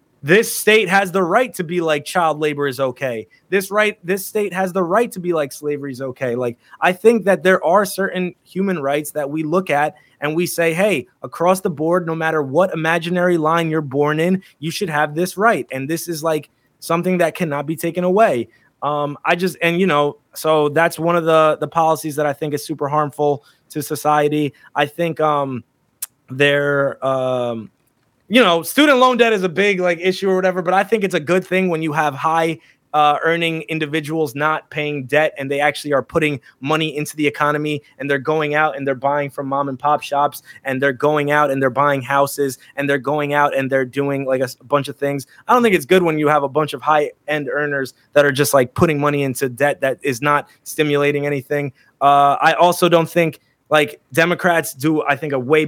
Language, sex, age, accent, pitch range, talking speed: English, male, 20-39, American, 145-170 Hz, 220 wpm